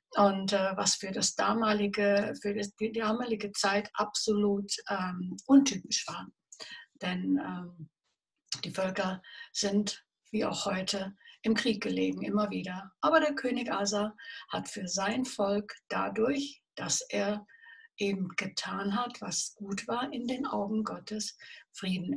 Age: 60-79